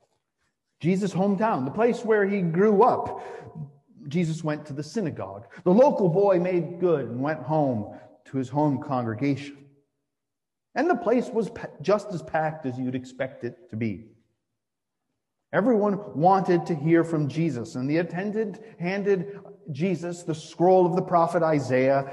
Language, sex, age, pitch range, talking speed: English, male, 40-59, 130-185 Hz, 150 wpm